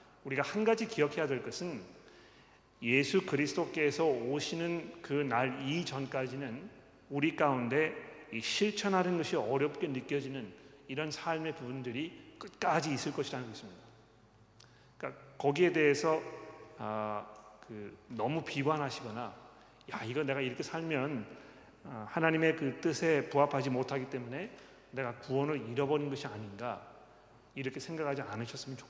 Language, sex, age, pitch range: Korean, male, 40-59, 130-155 Hz